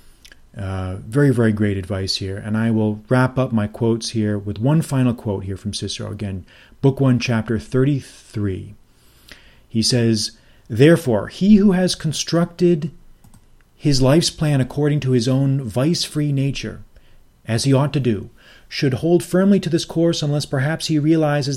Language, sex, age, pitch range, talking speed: English, male, 40-59, 110-140 Hz, 160 wpm